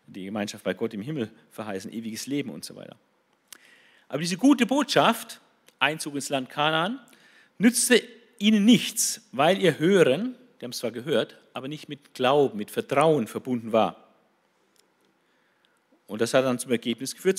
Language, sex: German, male